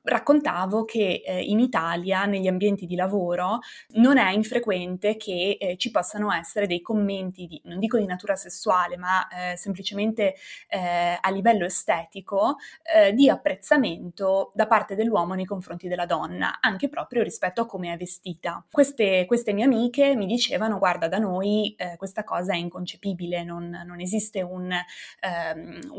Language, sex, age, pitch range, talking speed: Italian, female, 20-39, 180-215 Hz, 155 wpm